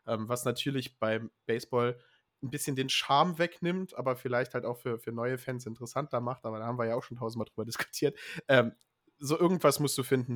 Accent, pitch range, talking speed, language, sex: German, 125-145 Hz, 210 wpm, German, male